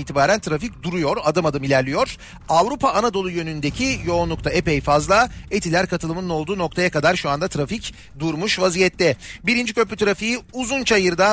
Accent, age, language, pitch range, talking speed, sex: native, 40-59, Turkish, 160-200 Hz, 140 wpm, male